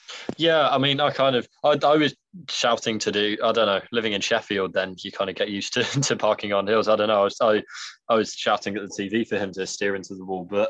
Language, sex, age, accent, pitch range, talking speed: English, male, 20-39, British, 105-135 Hz, 275 wpm